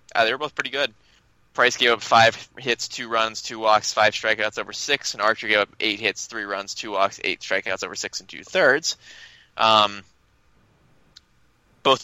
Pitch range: 105-120 Hz